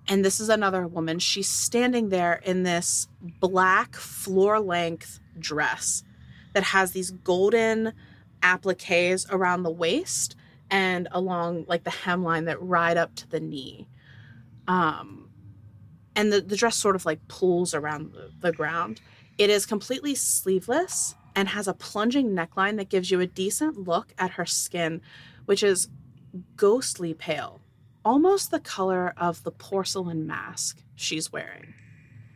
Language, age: English, 20-39